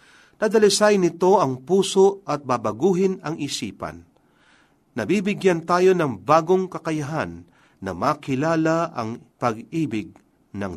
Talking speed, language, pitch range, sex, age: 100 wpm, Filipino, 125-185 Hz, male, 40-59